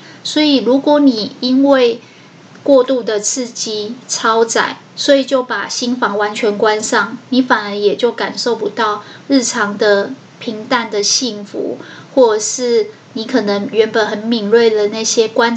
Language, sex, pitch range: Chinese, female, 215-260 Hz